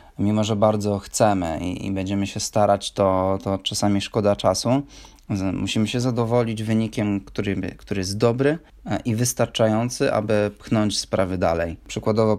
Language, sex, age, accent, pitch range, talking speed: Polish, male, 20-39, native, 100-110 Hz, 135 wpm